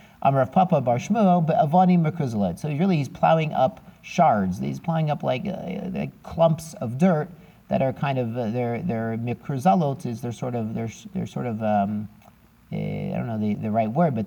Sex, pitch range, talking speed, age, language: male, 120-165 Hz, 175 wpm, 40-59, English